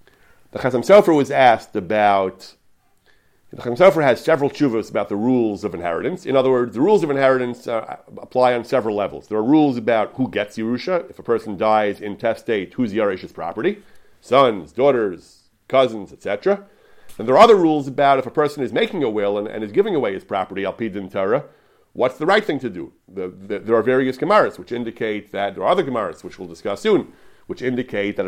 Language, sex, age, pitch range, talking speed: English, male, 40-59, 105-130 Hz, 200 wpm